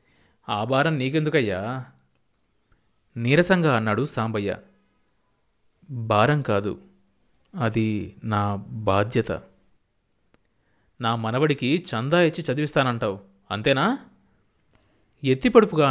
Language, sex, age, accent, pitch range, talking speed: Telugu, male, 30-49, native, 110-155 Hz, 70 wpm